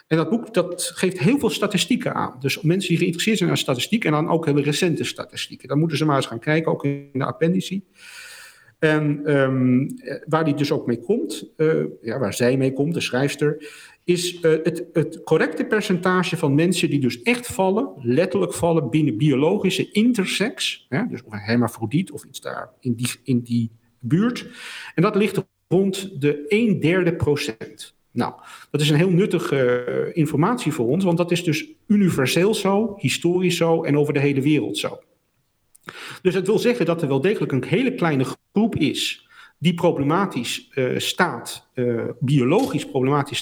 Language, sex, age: Dutch, male, 50-69